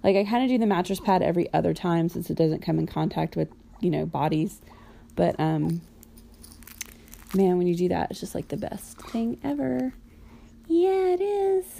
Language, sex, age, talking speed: English, female, 20-39, 195 wpm